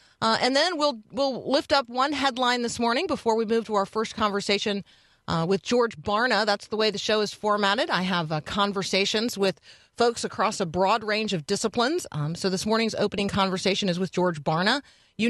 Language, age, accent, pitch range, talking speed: English, 40-59, American, 175-220 Hz, 205 wpm